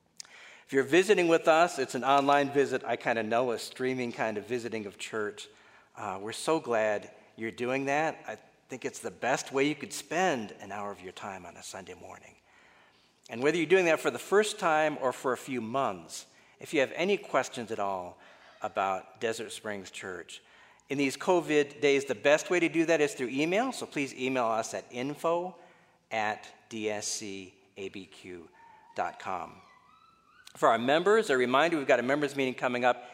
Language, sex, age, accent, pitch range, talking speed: English, male, 50-69, American, 110-150 Hz, 185 wpm